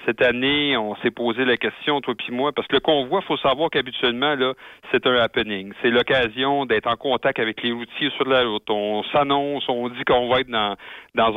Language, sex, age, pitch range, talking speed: French, male, 40-59, 115-145 Hz, 215 wpm